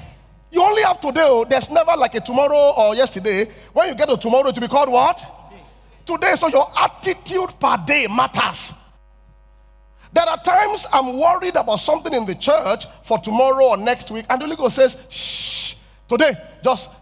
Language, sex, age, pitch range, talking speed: English, male, 40-59, 180-275 Hz, 160 wpm